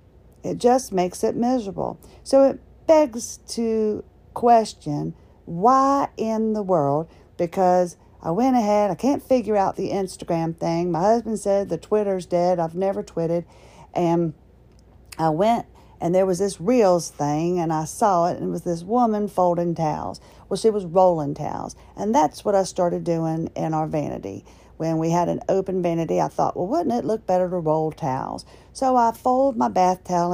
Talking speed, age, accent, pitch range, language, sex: 180 wpm, 50-69, American, 170-230 Hz, English, female